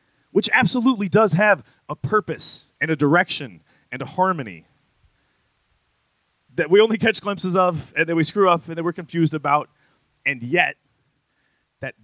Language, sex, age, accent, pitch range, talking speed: English, male, 30-49, American, 140-185 Hz, 155 wpm